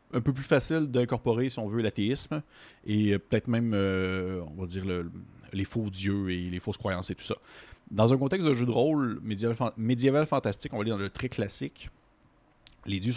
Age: 30-49